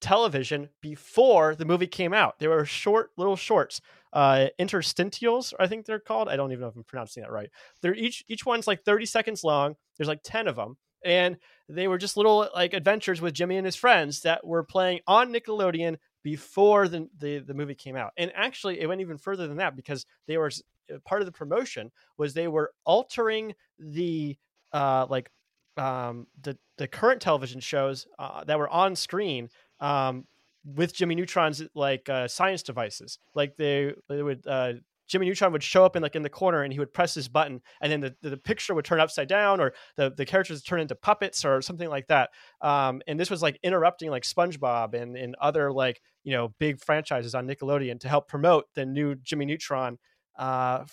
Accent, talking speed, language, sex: American, 205 wpm, English, male